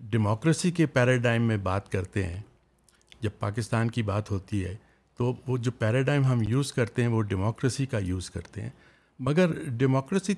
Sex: male